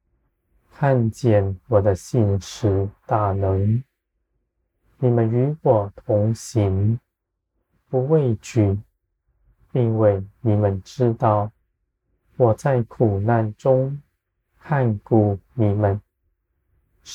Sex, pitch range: male, 100-120 Hz